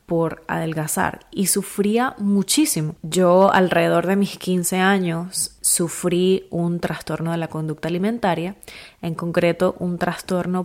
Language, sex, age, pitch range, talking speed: Spanish, female, 20-39, 170-205 Hz, 125 wpm